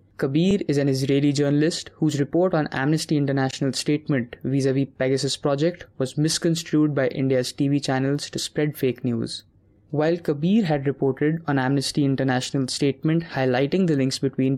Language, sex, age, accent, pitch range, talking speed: English, male, 20-39, Indian, 130-155 Hz, 150 wpm